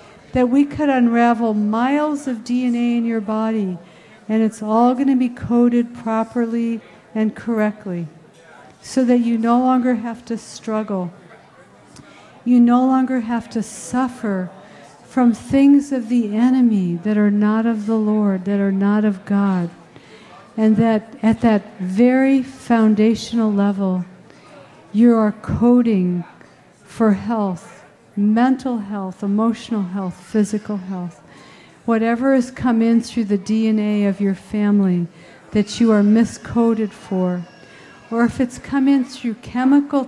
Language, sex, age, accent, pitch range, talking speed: English, female, 60-79, American, 200-240 Hz, 135 wpm